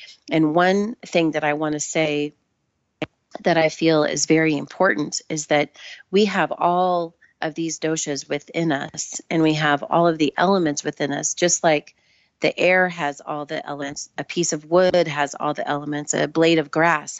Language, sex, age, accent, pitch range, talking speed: English, female, 30-49, American, 150-180 Hz, 185 wpm